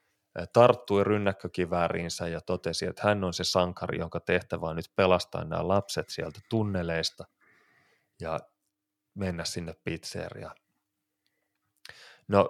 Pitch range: 85-110 Hz